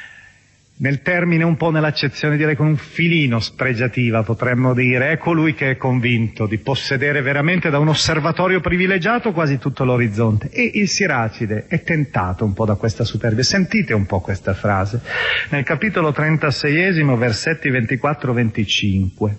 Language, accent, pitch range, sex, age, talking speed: Italian, native, 110-160 Hz, male, 40-59, 140 wpm